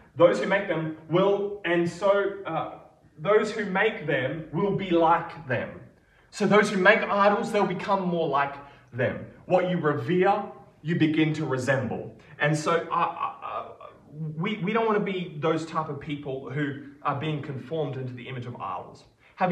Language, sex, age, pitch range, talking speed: English, male, 20-39, 145-190 Hz, 180 wpm